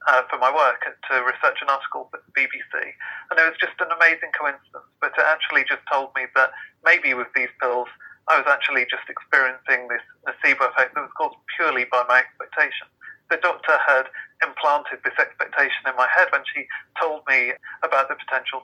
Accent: British